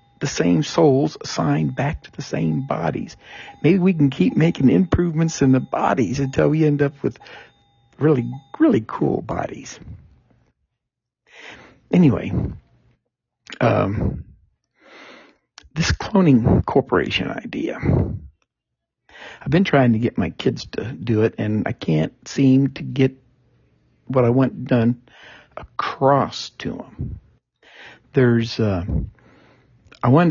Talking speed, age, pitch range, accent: 120 wpm, 60-79, 120-165 Hz, American